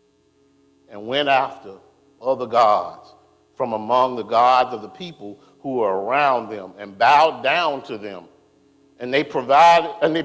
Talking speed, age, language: 150 wpm, 50-69, English